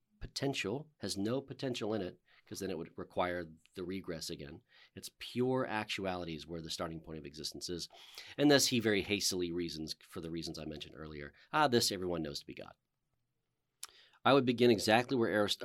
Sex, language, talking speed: male, English, 190 wpm